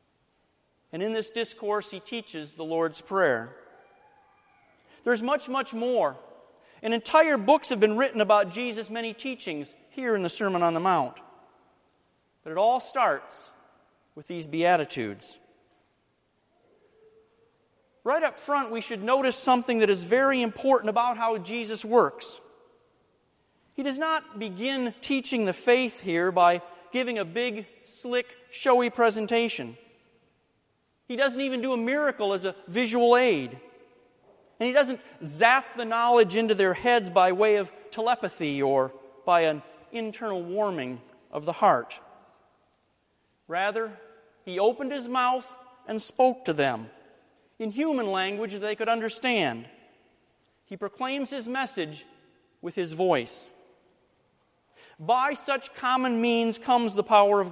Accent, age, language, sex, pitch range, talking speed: American, 40-59, English, male, 190-255 Hz, 135 wpm